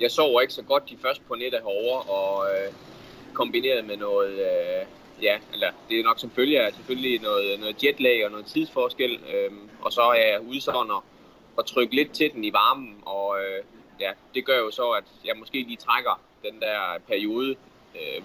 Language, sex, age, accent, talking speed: Danish, male, 20-39, native, 195 wpm